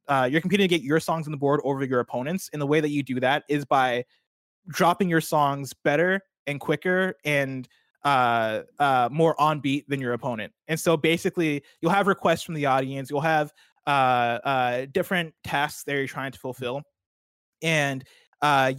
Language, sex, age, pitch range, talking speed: English, male, 20-39, 135-165 Hz, 190 wpm